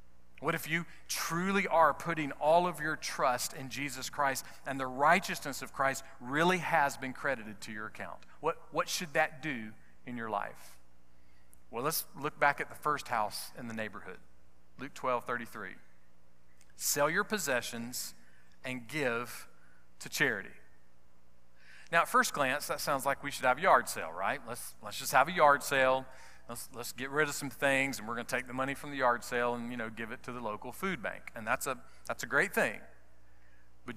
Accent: American